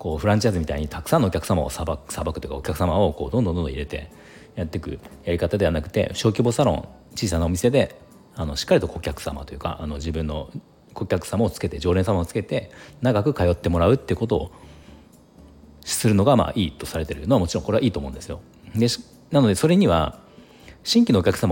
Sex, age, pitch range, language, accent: male, 40-59, 80-120 Hz, Japanese, native